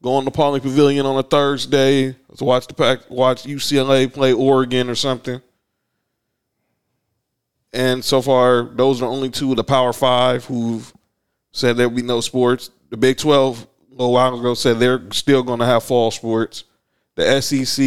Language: English